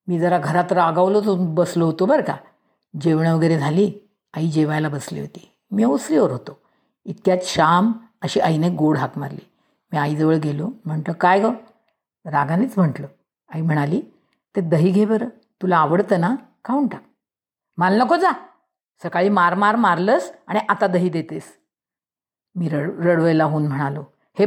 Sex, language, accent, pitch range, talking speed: female, Marathi, native, 160-215 Hz, 150 wpm